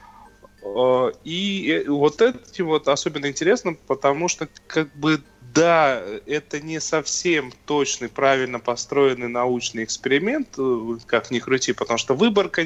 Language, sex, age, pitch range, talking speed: Russian, male, 20-39, 130-170 Hz, 120 wpm